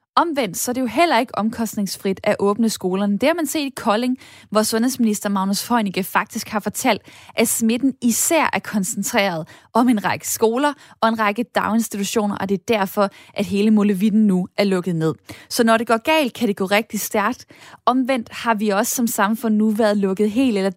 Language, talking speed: Danish, 200 wpm